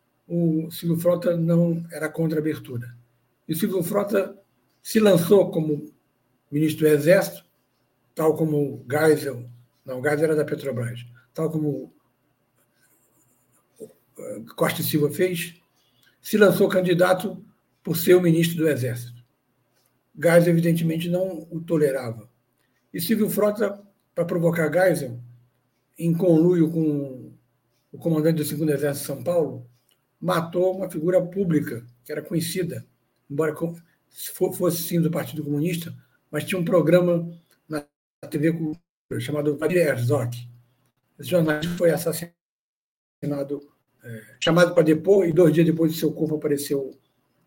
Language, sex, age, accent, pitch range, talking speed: Portuguese, male, 60-79, Brazilian, 140-175 Hz, 130 wpm